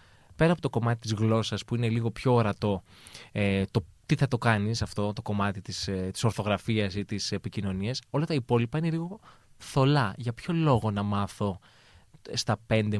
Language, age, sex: Greek, 20-39, male